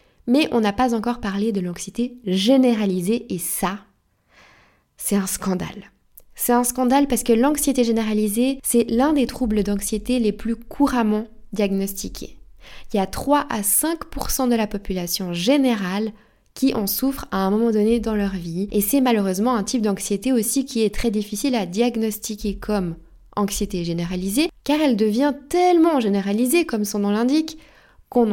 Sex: female